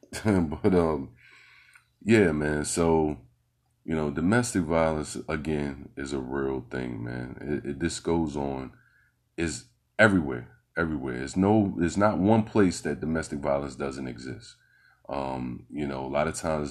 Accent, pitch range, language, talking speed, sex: American, 70-80 Hz, English, 145 wpm, male